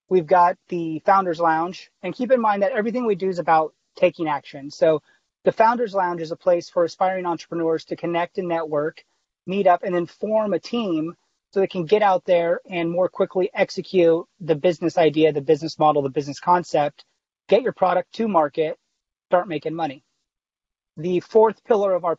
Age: 30-49